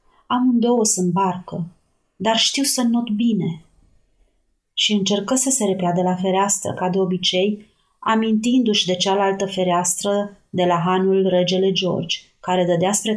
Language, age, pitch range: Romanian, 30-49, 180-215 Hz